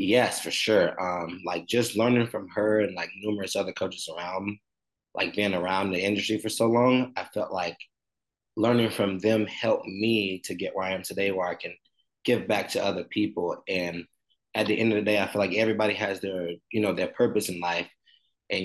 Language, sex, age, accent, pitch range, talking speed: English, male, 20-39, American, 90-110 Hz, 210 wpm